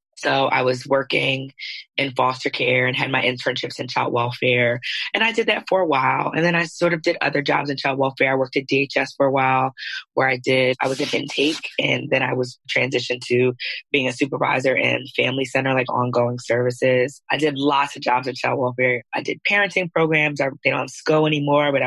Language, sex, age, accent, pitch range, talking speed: English, female, 20-39, American, 130-150 Hz, 215 wpm